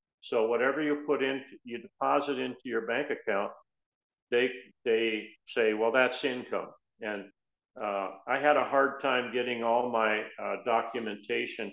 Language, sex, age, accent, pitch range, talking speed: English, male, 50-69, American, 110-140 Hz, 150 wpm